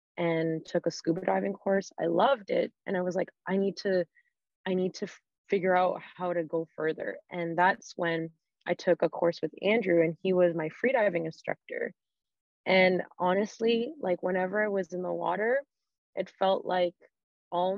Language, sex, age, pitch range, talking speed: English, female, 20-39, 170-195 Hz, 180 wpm